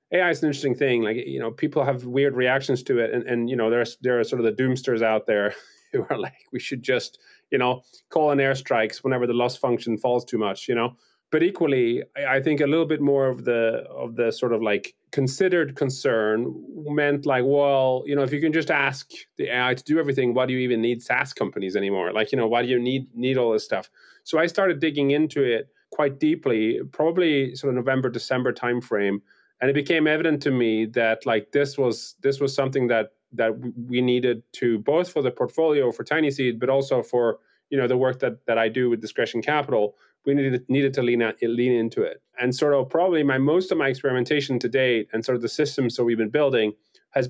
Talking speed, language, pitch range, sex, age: 230 wpm, English, 120-145 Hz, male, 30-49